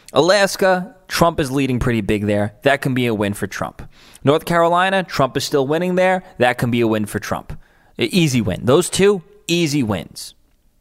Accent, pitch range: American, 120-185 Hz